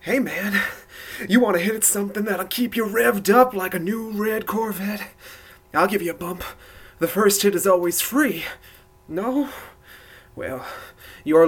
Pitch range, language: 195-290 Hz, English